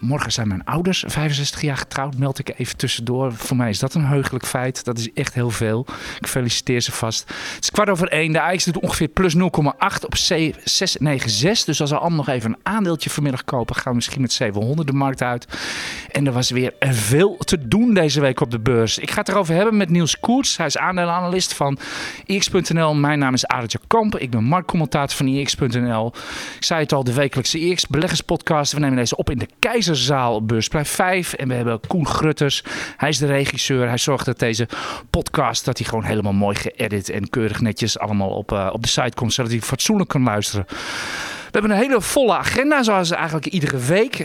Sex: male